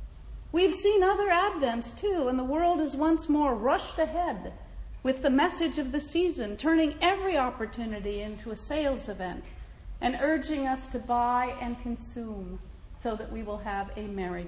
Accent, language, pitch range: American, English, 230-285 Hz